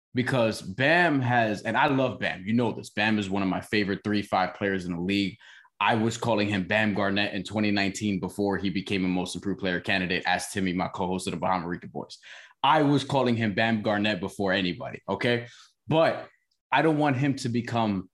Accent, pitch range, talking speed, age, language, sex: American, 95-125 Hz, 205 wpm, 20-39, English, male